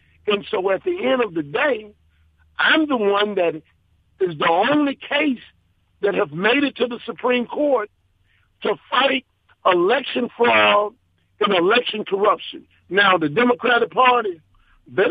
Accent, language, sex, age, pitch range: American, Japanese, male, 50-69, 170-250 Hz